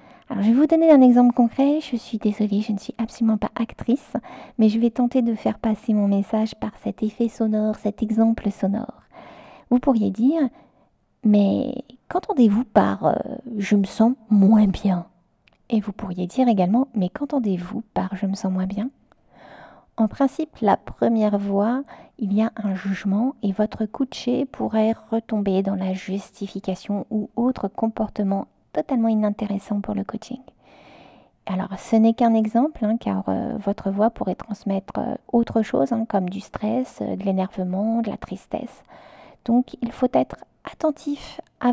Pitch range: 205-255 Hz